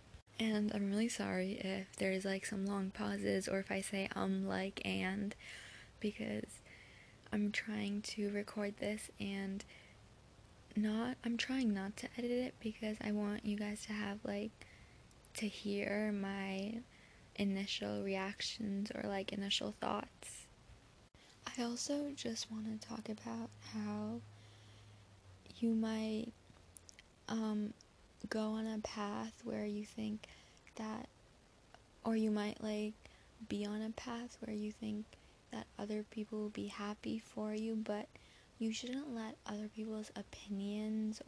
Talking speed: 135 wpm